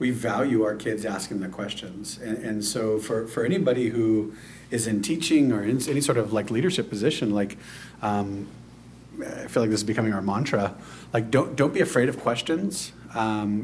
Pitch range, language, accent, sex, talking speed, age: 105-125 Hz, English, American, male, 190 wpm, 40-59